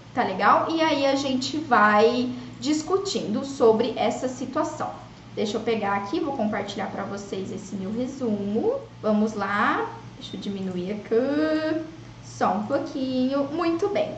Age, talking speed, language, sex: 10-29, 140 wpm, Portuguese, female